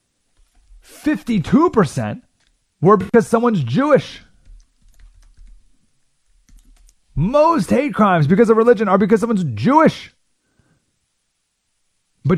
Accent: American